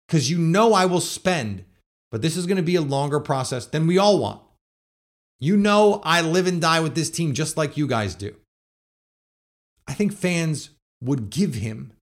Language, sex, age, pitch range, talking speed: English, male, 30-49, 110-170 Hz, 195 wpm